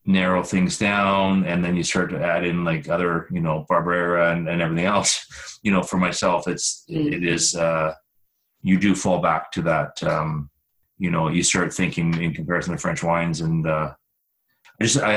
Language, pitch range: English, 85-95 Hz